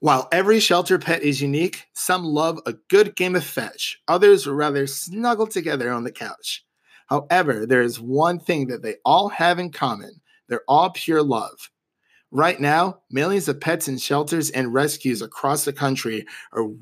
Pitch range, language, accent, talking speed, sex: 135-175 Hz, English, American, 170 wpm, male